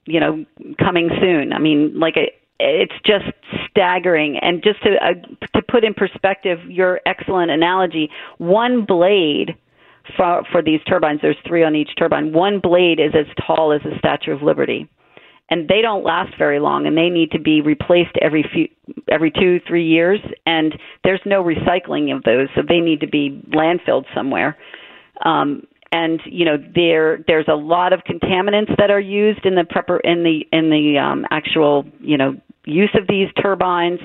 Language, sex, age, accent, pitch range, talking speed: English, female, 40-59, American, 155-185 Hz, 180 wpm